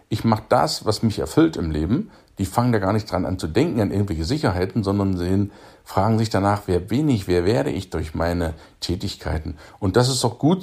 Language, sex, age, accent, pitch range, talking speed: German, male, 50-69, German, 90-125 Hz, 220 wpm